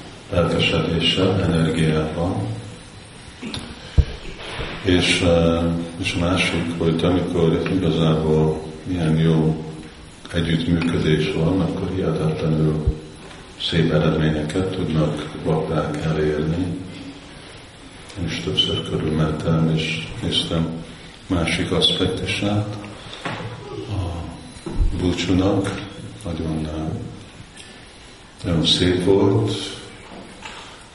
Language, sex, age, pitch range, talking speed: Hungarian, male, 50-69, 80-90 Hz, 60 wpm